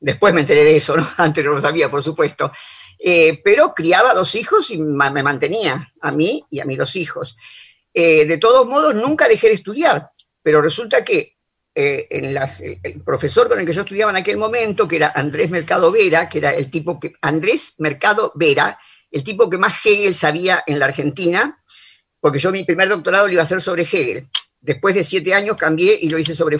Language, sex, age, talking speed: Spanish, female, 50-69, 215 wpm